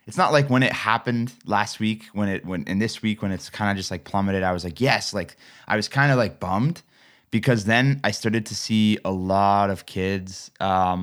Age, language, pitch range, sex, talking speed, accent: 20-39, English, 95-110 Hz, male, 235 wpm, American